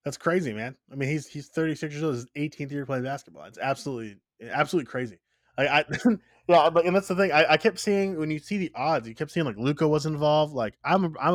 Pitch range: 125-160 Hz